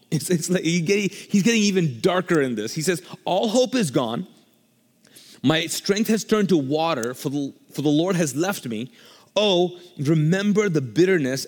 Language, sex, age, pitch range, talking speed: English, male, 30-49, 135-180 Hz, 150 wpm